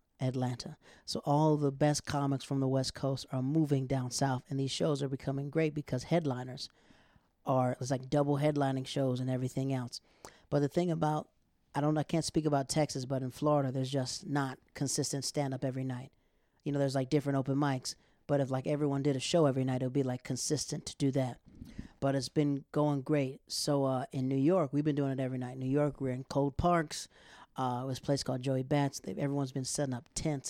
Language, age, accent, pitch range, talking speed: English, 40-59, American, 130-150 Hz, 225 wpm